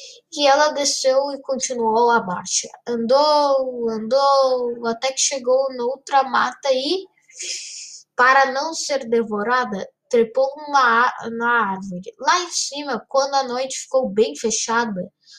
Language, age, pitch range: Portuguese, 10-29, 215-270 Hz